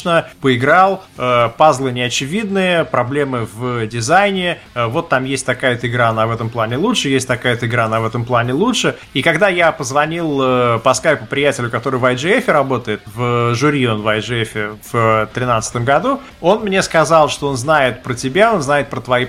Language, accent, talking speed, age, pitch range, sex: Russian, native, 185 wpm, 30-49, 125-155 Hz, male